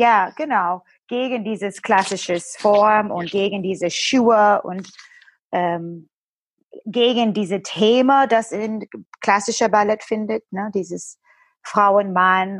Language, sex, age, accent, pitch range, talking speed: German, female, 20-39, German, 180-225 Hz, 105 wpm